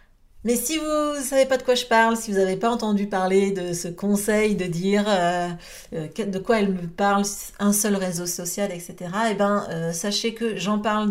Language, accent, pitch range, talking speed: French, French, 185-230 Hz, 205 wpm